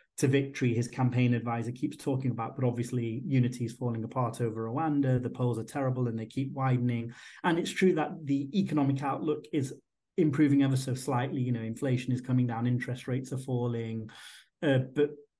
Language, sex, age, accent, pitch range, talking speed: English, male, 30-49, British, 120-145 Hz, 185 wpm